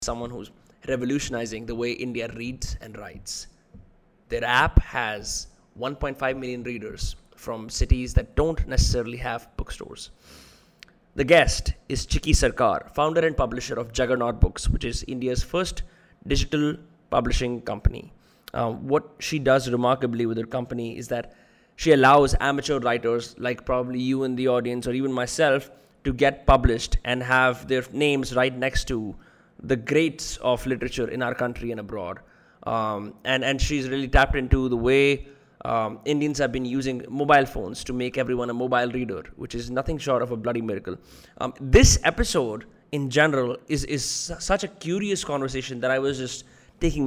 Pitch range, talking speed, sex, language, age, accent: 120-135 Hz, 165 wpm, male, English, 20-39, Indian